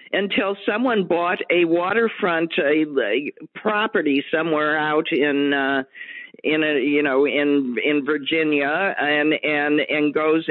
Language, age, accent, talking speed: English, 50-69, American, 125 wpm